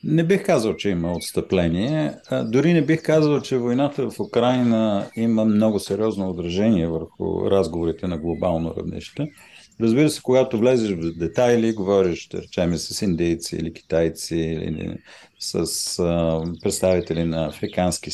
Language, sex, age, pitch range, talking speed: Bulgarian, male, 40-59, 85-115 Hz, 140 wpm